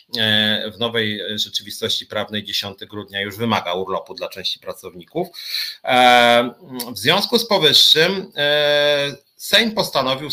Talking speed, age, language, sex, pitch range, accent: 105 wpm, 40-59, Polish, male, 110-145 Hz, native